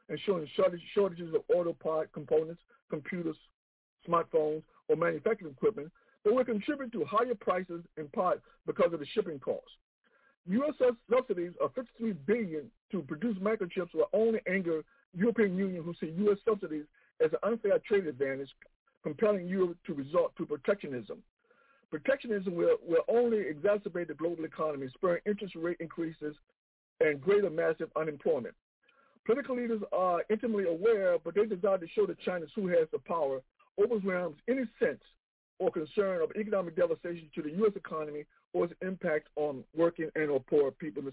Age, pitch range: 60-79, 160-230 Hz